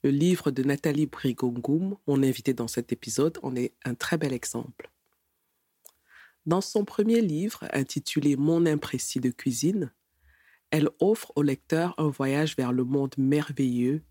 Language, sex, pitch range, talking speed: French, female, 125-155 Hz, 150 wpm